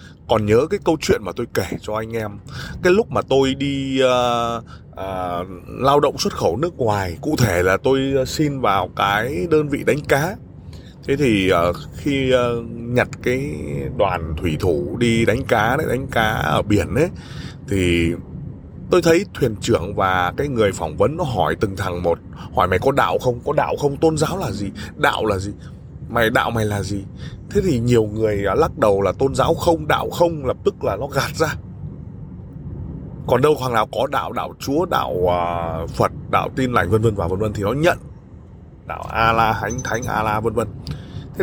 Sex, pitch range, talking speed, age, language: male, 95-135 Hz, 195 wpm, 20-39, Vietnamese